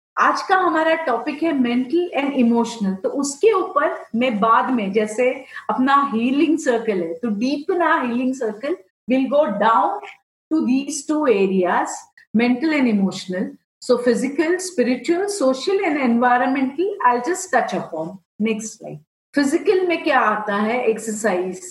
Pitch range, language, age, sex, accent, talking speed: 215-280 Hz, English, 50-69, female, Indian, 125 wpm